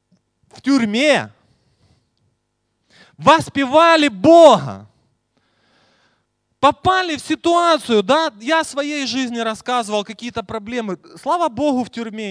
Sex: male